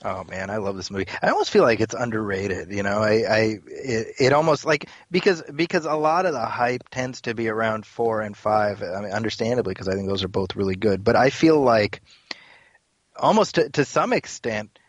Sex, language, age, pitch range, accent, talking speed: male, English, 30-49, 105-125 Hz, American, 220 wpm